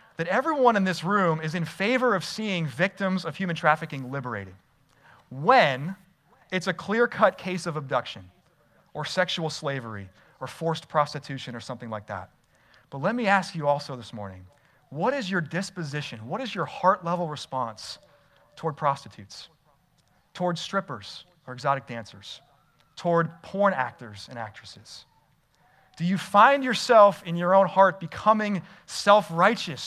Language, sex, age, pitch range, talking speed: English, male, 30-49, 140-195 Hz, 145 wpm